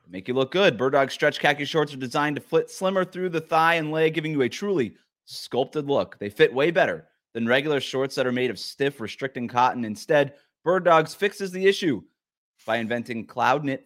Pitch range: 110-140 Hz